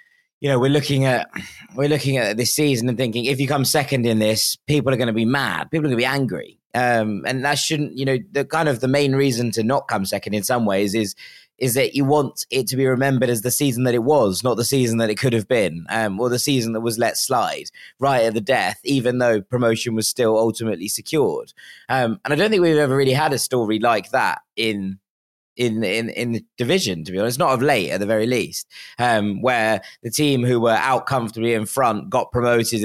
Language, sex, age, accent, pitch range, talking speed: English, male, 20-39, British, 110-135 Hz, 240 wpm